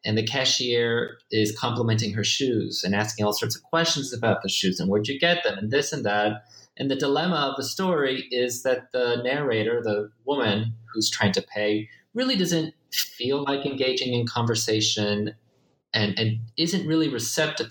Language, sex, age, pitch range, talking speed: English, male, 30-49, 110-150 Hz, 180 wpm